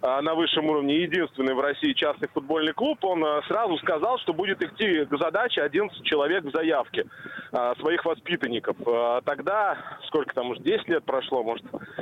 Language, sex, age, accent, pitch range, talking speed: Russian, male, 20-39, native, 160-235 Hz, 155 wpm